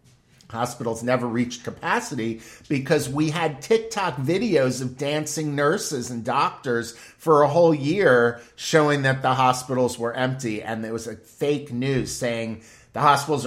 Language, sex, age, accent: English, male, 50-69, American